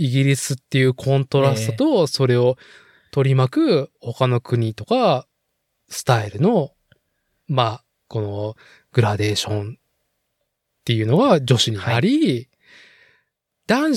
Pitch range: 125-190 Hz